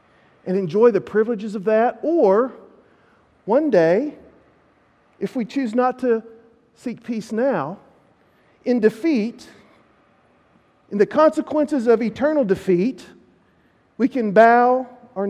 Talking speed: 115 wpm